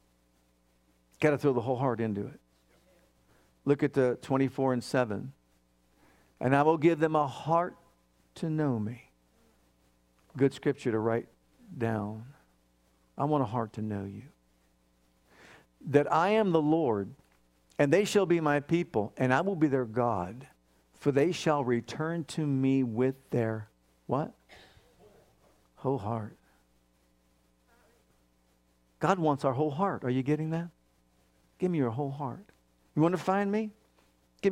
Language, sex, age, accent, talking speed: English, male, 50-69, American, 145 wpm